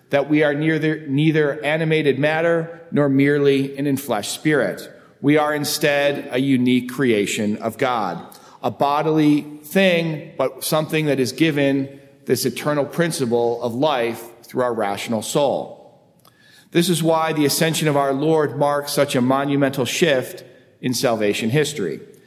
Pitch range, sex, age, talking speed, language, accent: 125-155 Hz, male, 40-59, 140 wpm, English, American